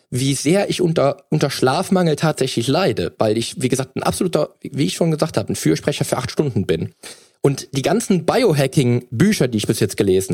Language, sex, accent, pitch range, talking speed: German, male, German, 115-150 Hz, 195 wpm